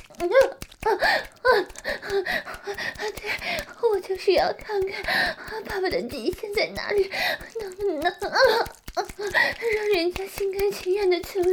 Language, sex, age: Chinese, female, 20-39